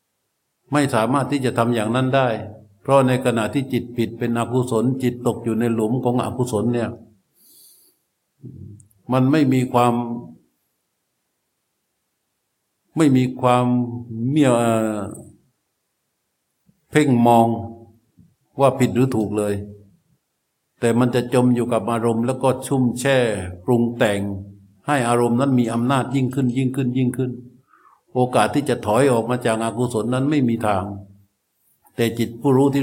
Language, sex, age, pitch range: Thai, male, 60-79, 110-130 Hz